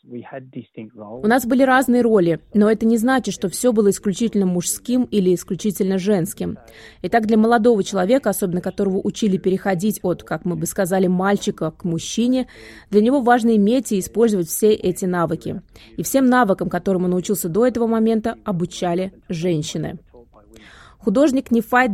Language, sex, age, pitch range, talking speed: Russian, female, 20-39, 180-230 Hz, 150 wpm